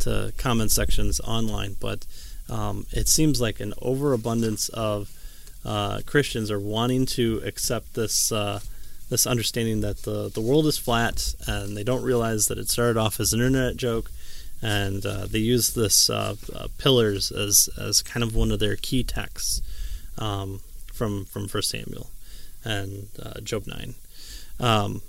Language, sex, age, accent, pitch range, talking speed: English, male, 30-49, American, 100-120 Hz, 160 wpm